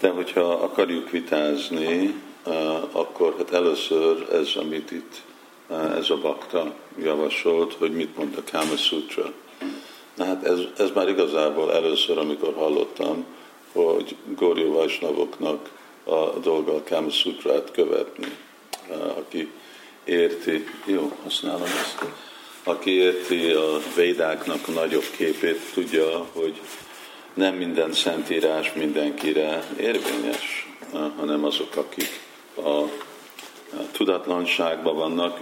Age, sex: 50-69, male